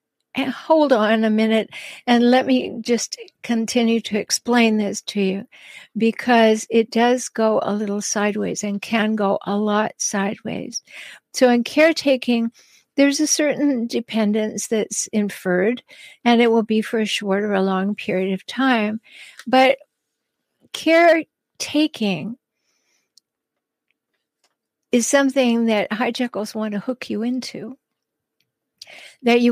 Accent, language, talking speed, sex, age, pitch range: American, English, 130 wpm, female, 60-79, 215-255 Hz